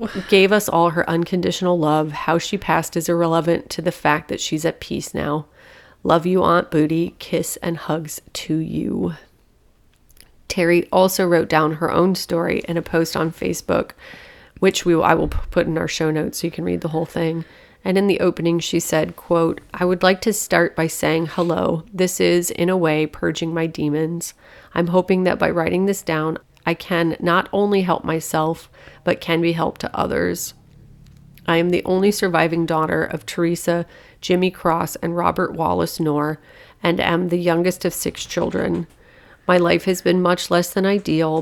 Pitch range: 160-180 Hz